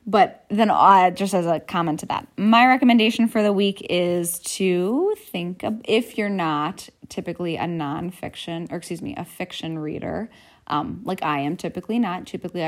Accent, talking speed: American, 175 wpm